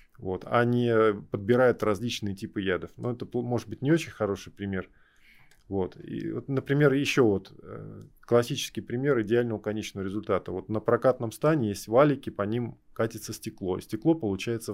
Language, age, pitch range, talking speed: Russian, 20-39, 105-130 Hz, 155 wpm